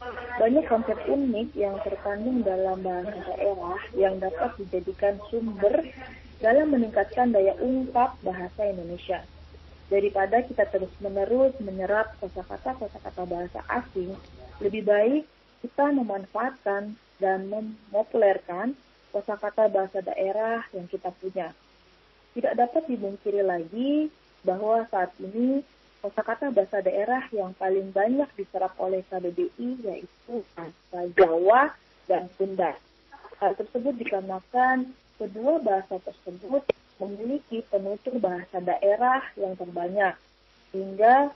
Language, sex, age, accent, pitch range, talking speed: Indonesian, female, 20-39, native, 190-240 Hz, 105 wpm